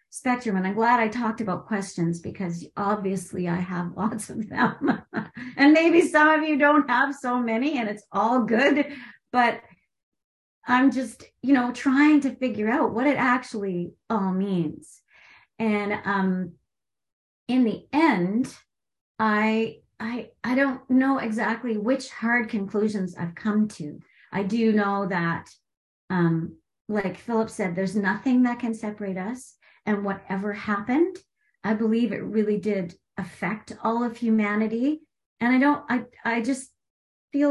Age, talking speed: 40-59, 145 wpm